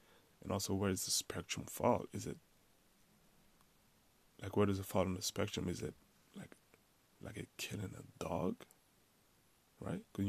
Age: 20-39